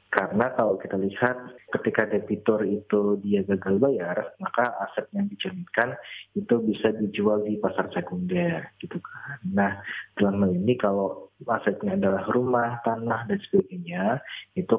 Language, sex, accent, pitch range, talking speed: Indonesian, male, native, 105-130 Hz, 135 wpm